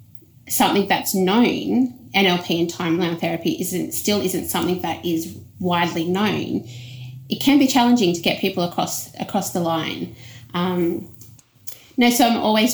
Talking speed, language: 145 wpm, English